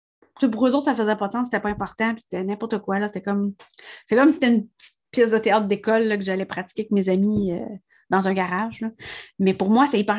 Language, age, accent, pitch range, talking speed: French, 30-49, Canadian, 195-235 Hz, 265 wpm